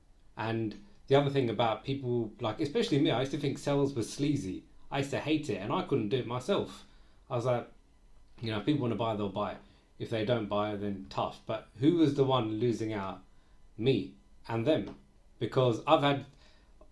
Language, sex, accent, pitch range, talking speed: English, male, British, 105-140 Hz, 205 wpm